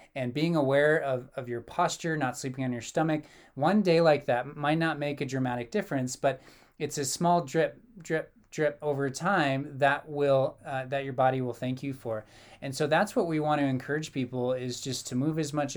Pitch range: 130-155 Hz